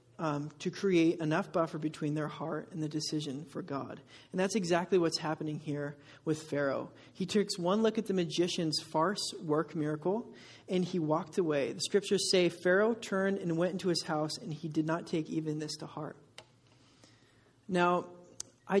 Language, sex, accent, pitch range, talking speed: English, male, American, 155-190 Hz, 180 wpm